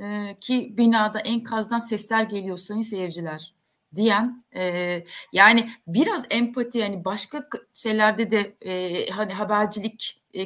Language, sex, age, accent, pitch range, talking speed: Turkish, female, 30-49, native, 200-255 Hz, 115 wpm